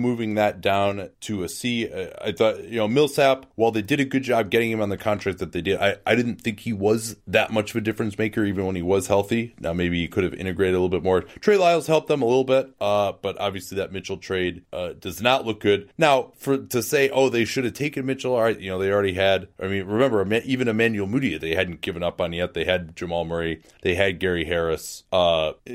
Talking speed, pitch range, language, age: 250 wpm, 95-115 Hz, English, 30-49